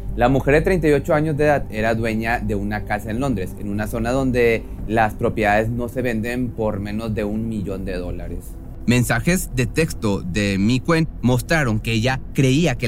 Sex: male